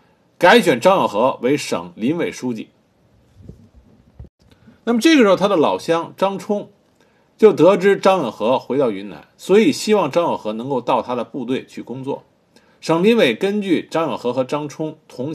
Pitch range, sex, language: 150-230 Hz, male, Chinese